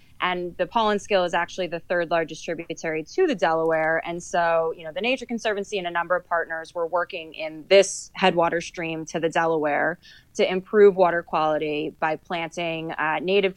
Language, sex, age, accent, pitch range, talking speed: English, female, 20-39, American, 160-185 Hz, 185 wpm